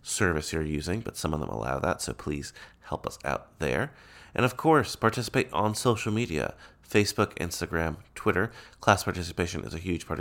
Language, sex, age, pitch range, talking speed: English, male, 30-49, 80-110 Hz, 180 wpm